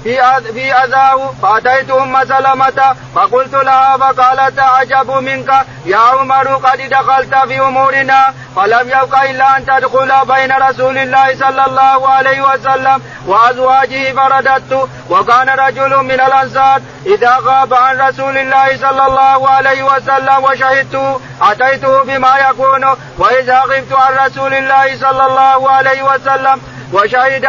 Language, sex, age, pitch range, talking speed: Arabic, male, 40-59, 265-270 Hz, 120 wpm